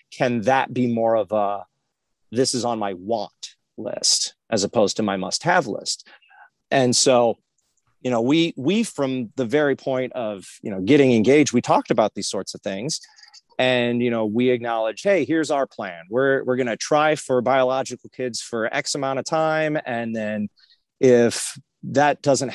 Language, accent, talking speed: English, American, 180 wpm